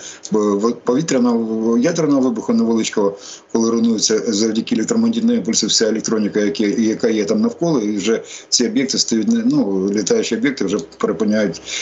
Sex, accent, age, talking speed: male, native, 50-69, 135 wpm